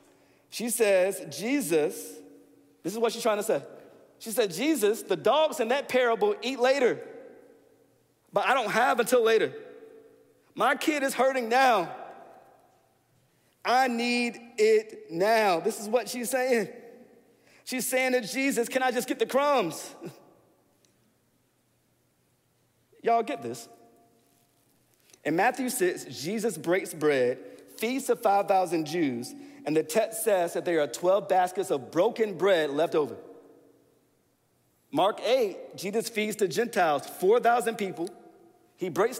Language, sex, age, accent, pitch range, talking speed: English, male, 40-59, American, 210-285 Hz, 135 wpm